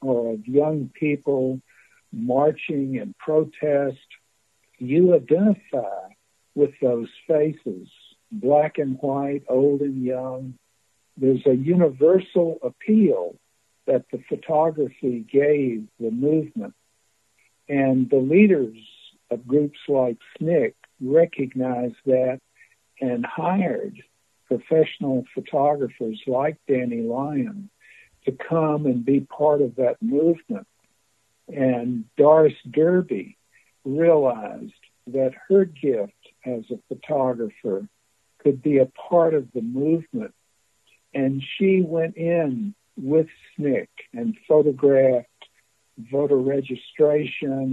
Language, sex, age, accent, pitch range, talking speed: English, male, 60-79, American, 125-155 Hz, 100 wpm